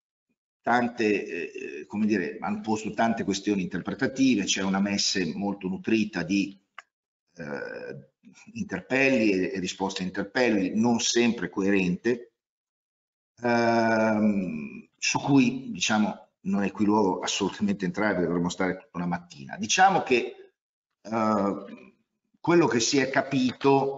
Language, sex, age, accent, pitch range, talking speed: Italian, male, 50-69, native, 95-135 Hz, 120 wpm